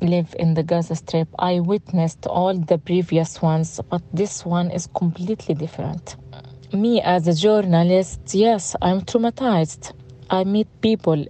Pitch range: 165-195 Hz